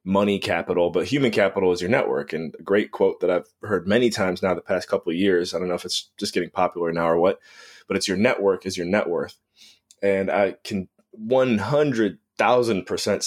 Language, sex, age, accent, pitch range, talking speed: English, male, 20-39, American, 95-110 Hz, 210 wpm